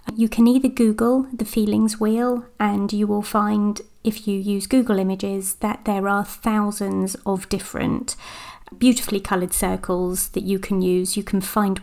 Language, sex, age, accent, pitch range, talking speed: English, female, 30-49, British, 195-230 Hz, 160 wpm